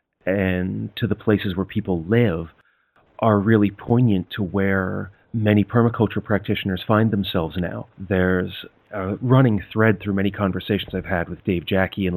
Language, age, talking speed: English, 30-49, 155 wpm